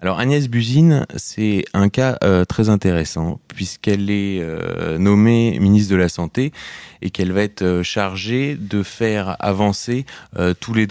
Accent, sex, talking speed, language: French, male, 160 wpm, French